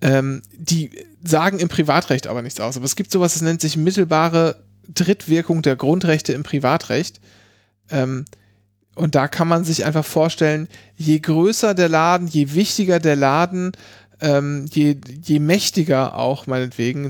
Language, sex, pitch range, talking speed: German, male, 120-165 Hz, 150 wpm